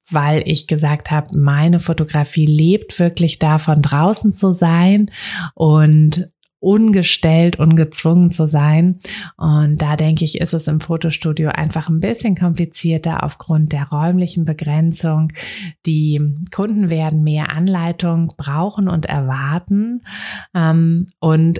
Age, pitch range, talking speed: 30-49, 150-175 Hz, 115 wpm